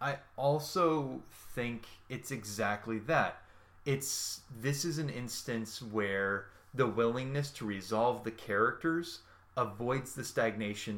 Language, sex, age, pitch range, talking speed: English, male, 20-39, 100-135 Hz, 115 wpm